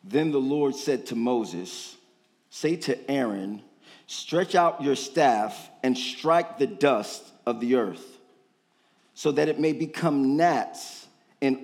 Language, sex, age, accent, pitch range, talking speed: English, male, 40-59, American, 125-175 Hz, 140 wpm